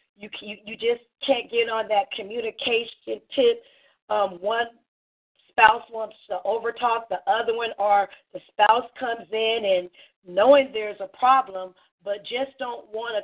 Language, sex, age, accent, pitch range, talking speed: English, female, 40-59, American, 215-285 Hz, 155 wpm